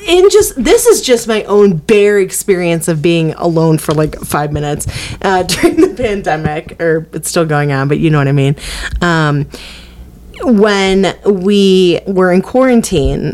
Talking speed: 165 wpm